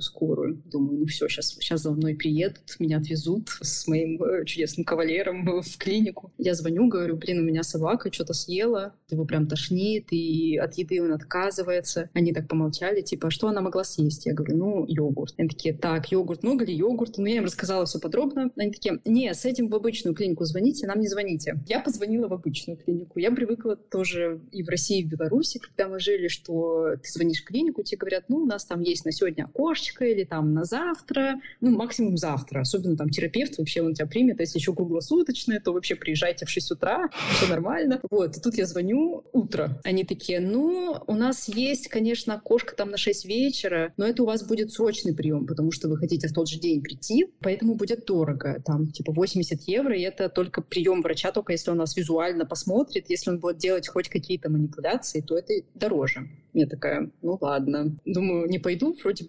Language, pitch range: Russian, 165-220 Hz